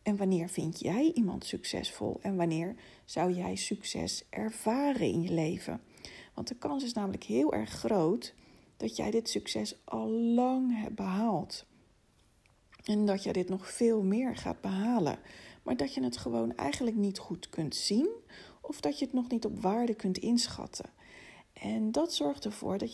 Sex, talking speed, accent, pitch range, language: female, 170 wpm, Dutch, 185-235 Hz, Dutch